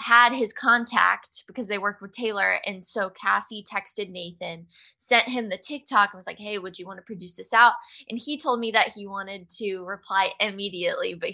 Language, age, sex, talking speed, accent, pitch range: English, 10-29, female, 205 wpm, American, 200-250 Hz